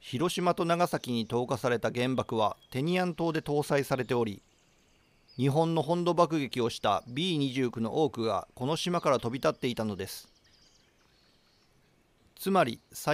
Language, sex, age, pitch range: Japanese, male, 40-59, 120-165 Hz